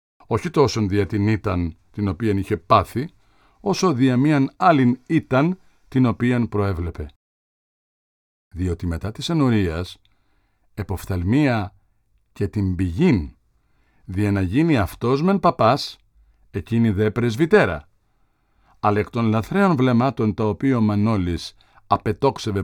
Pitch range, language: 100-130 Hz, Greek